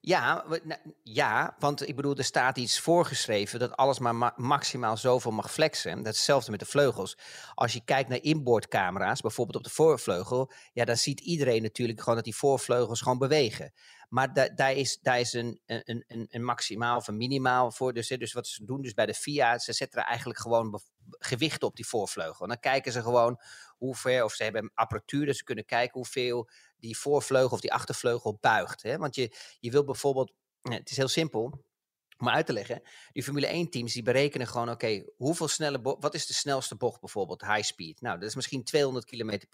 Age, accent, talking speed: 40-59, Dutch, 210 wpm